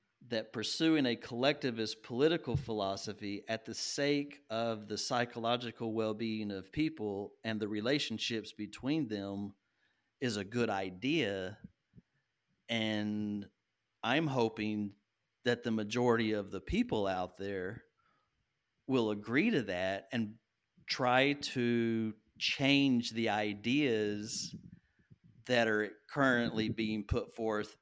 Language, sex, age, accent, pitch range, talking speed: English, male, 50-69, American, 105-120 Hz, 110 wpm